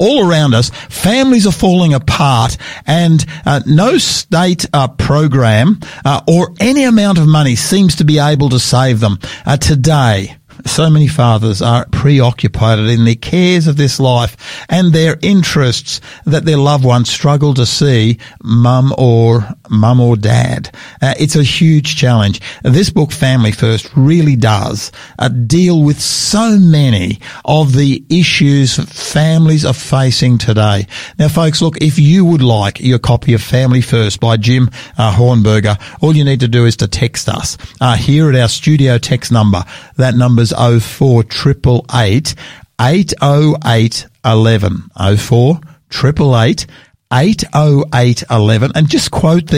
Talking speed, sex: 140 wpm, male